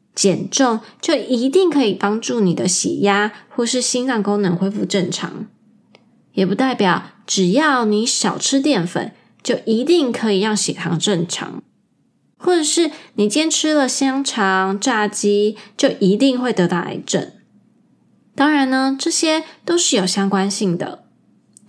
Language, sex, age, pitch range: Chinese, female, 20-39, 195-270 Hz